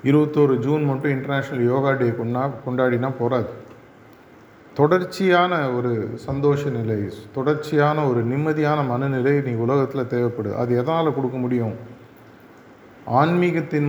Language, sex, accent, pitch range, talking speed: Tamil, male, native, 120-145 Hz, 110 wpm